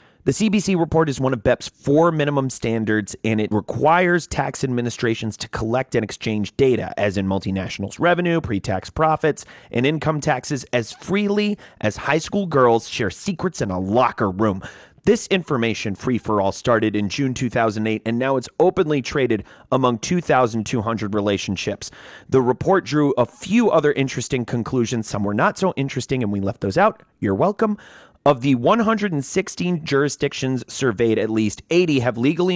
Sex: male